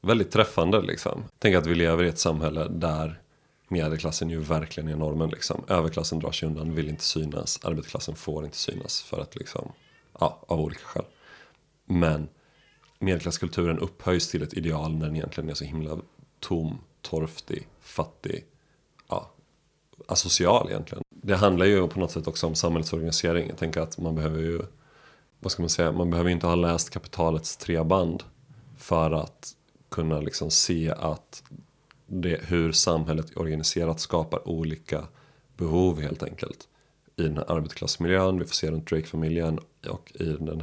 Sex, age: male, 30-49